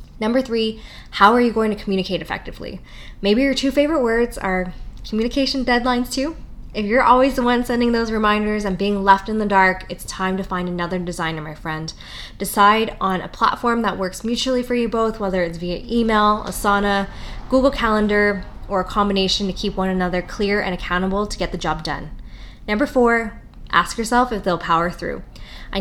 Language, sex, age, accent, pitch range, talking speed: English, female, 20-39, American, 185-220 Hz, 190 wpm